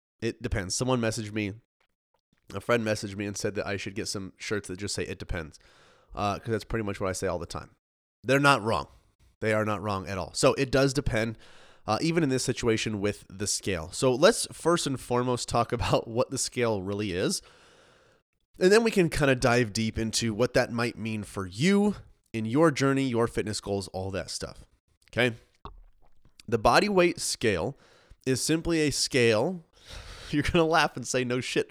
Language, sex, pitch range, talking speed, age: English, male, 100-135 Hz, 205 wpm, 30-49